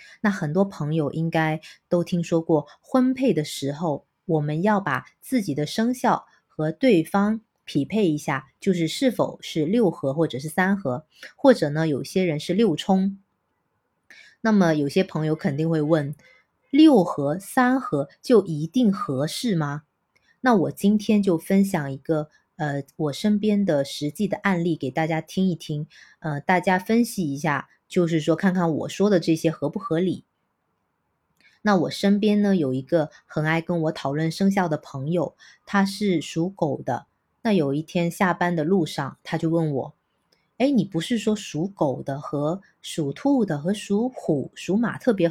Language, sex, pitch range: Chinese, female, 155-205 Hz